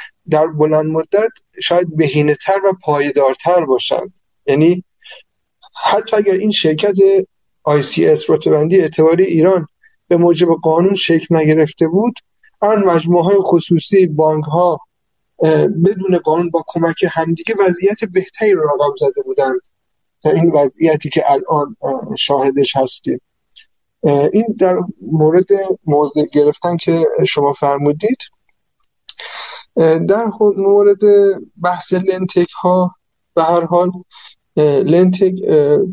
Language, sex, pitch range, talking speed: Persian, male, 155-195 Hz, 105 wpm